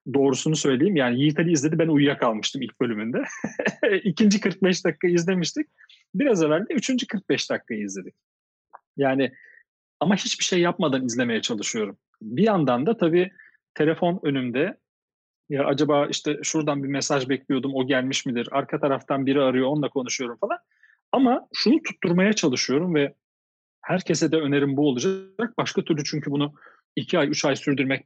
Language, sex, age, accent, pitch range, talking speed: Turkish, male, 40-59, native, 135-195 Hz, 150 wpm